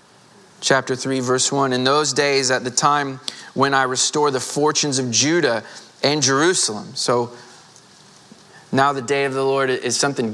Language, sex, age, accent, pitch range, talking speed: English, male, 20-39, American, 120-145 Hz, 165 wpm